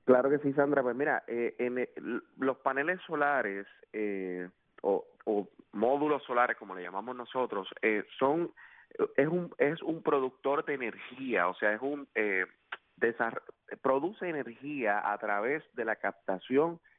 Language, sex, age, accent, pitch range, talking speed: English, male, 30-49, Venezuelan, 105-140 Hz, 150 wpm